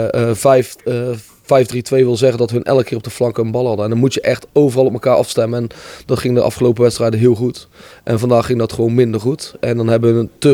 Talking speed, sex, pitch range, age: 245 wpm, male, 110-125 Hz, 20-39